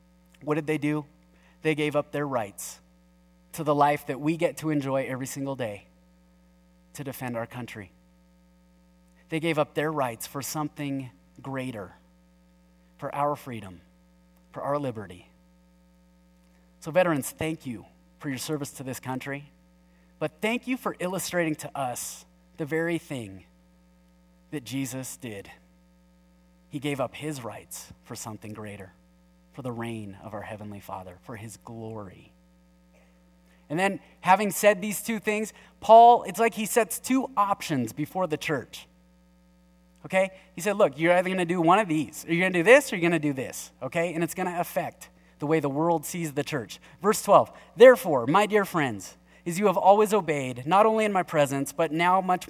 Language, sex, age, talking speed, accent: English, male, 30-49, 175 wpm, American